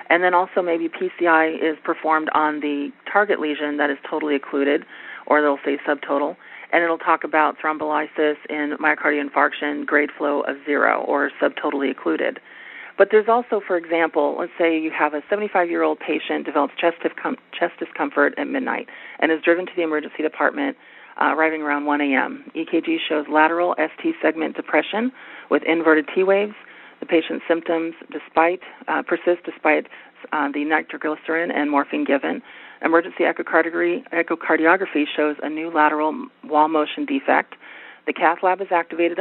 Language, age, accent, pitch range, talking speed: English, 40-59, American, 150-170 Hz, 150 wpm